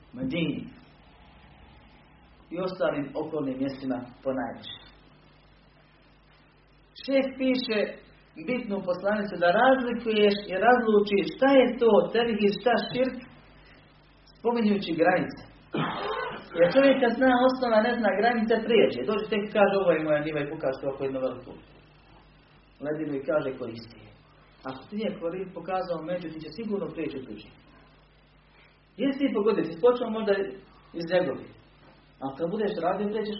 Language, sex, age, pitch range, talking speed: Croatian, male, 40-59, 155-215 Hz, 130 wpm